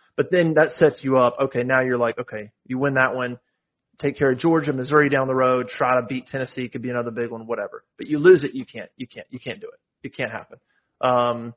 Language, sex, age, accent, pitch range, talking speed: English, male, 30-49, American, 120-145 Hz, 255 wpm